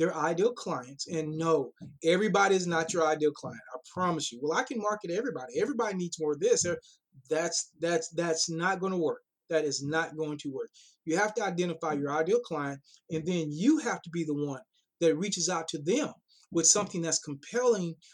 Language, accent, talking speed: English, American, 200 wpm